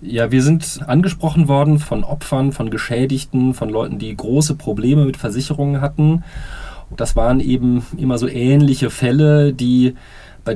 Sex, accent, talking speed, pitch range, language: male, German, 150 wpm, 110-140 Hz, German